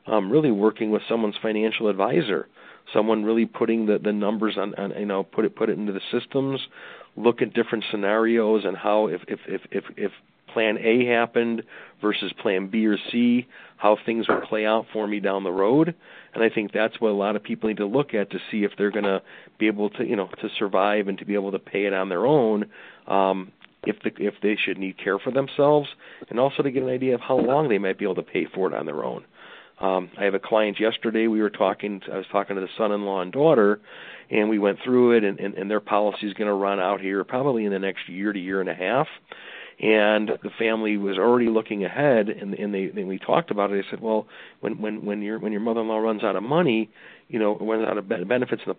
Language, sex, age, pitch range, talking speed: English, male, 40-59, 100-115 Hz, 245 wpm